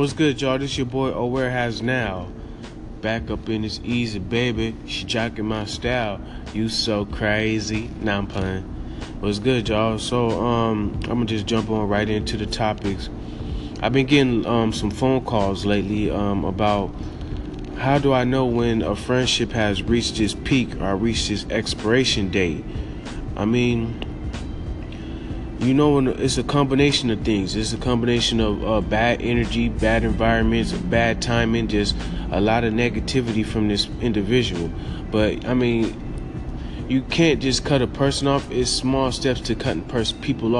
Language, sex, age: English, male, 20-39